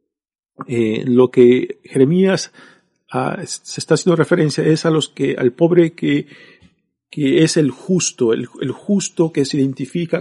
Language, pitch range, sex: Spanish, 125-160 Hz, male